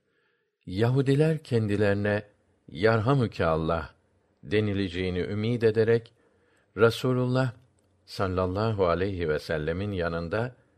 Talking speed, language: 70 wpm, Turkish